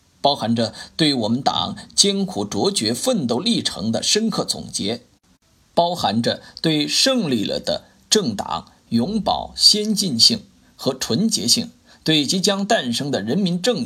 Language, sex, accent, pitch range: Chinese, male, native, 145-235 Hz